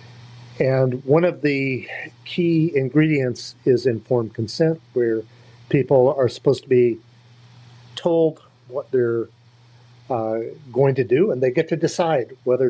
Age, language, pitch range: 50-69, English, 120-145 Hz